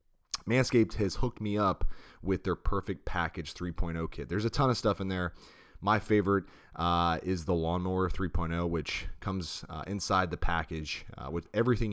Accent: American